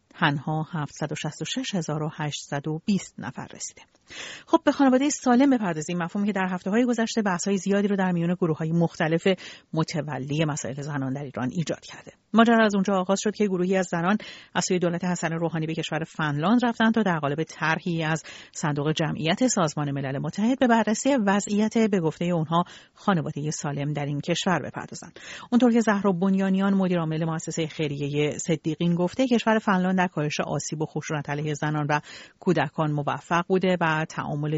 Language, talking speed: Persian, 160 wpm